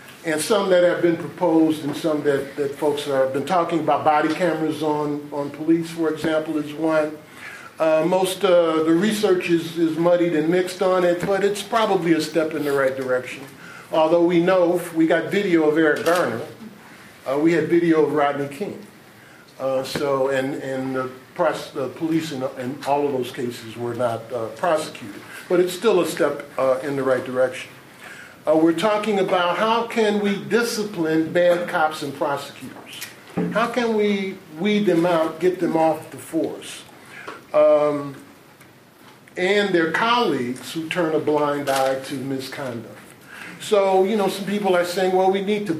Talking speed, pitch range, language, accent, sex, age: 180 wpm, 140-175 Hz, English, American, male, 50-69